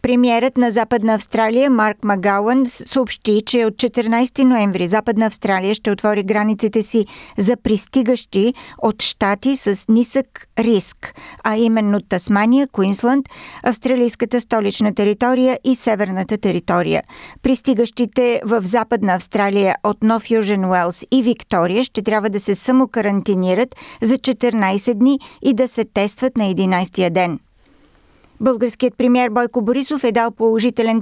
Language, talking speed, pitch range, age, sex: Bulgarian, 130 wpm, 205-245 Hz, 50-69, female